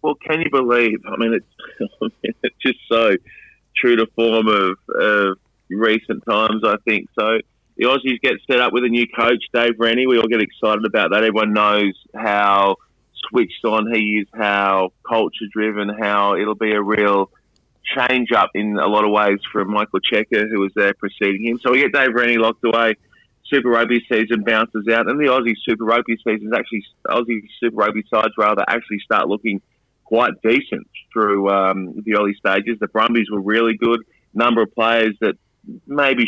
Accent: Australian